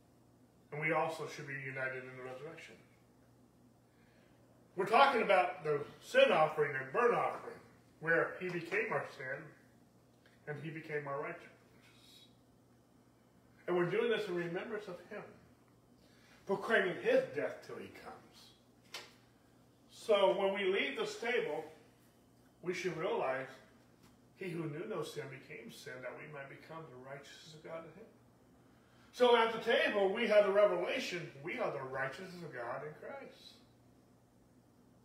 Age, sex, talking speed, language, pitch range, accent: 40-59, male, 140 wpm, English, 125-195 Hz, American